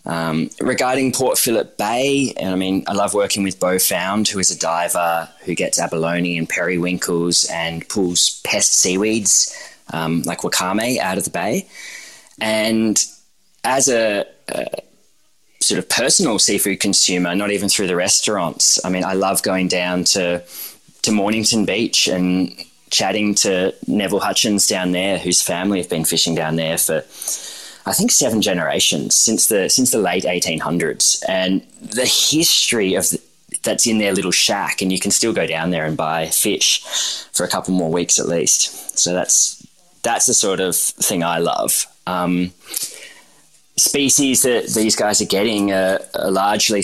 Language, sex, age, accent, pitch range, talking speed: English, male, 20-39, Australian, 90-105 Hz, 165 wpm